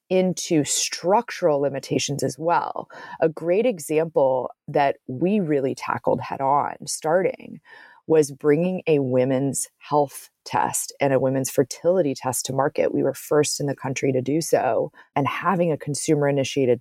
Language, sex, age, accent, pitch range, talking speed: English, female, 30-49, American, 130-170 Hz, 150 wpm